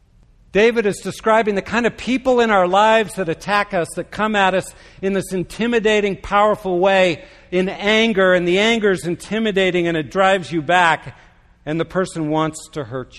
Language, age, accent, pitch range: English, 60-79, American, 160-210 Hz